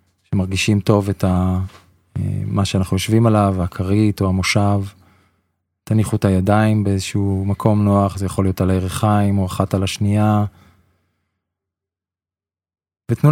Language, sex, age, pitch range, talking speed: Hebrew, male, 20-39, 95-105 Hz, 120 wpm